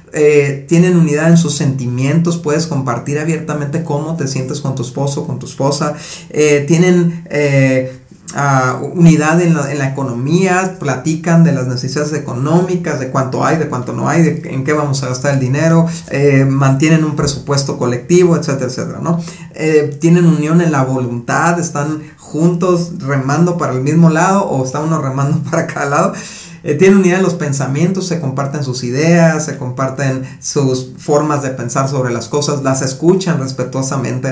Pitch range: 135-165 Hz